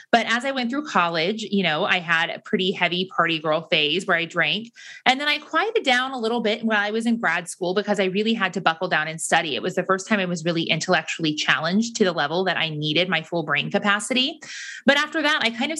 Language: English